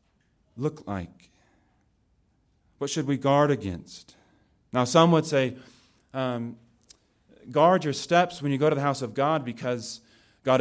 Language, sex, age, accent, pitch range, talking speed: English, male, 40-59, American, 110-145 Hz, 140 wpm